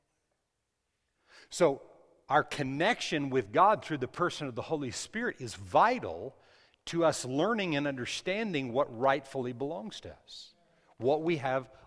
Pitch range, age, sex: 110-155 Hz, 60-79, male